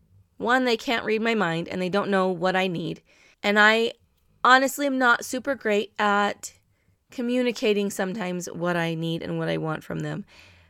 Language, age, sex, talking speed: English, 20-39, female, 180 wpm